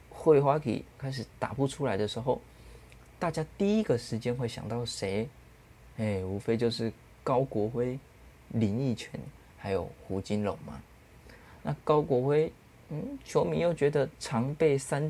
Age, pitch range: 20-39, 105-145 Hz